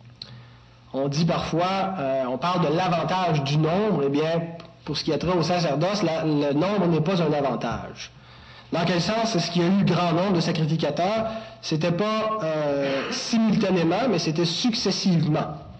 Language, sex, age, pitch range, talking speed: French, male, 30-49, 145-195 Hz, 170 wpm